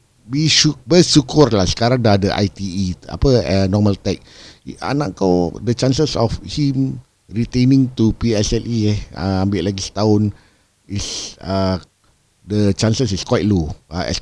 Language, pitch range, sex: Malay, 85-110 Hz, male